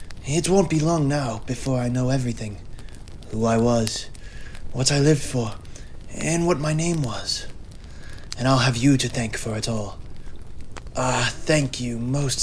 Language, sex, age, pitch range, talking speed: English, male, 20-39, 110-130 Hz, 165 wpm